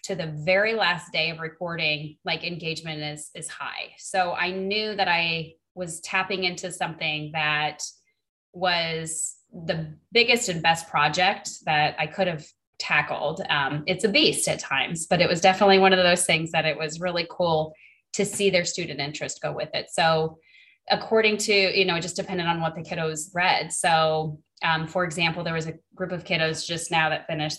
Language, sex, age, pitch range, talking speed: English, female, 20-39, 155-180 Hz, 190 wpm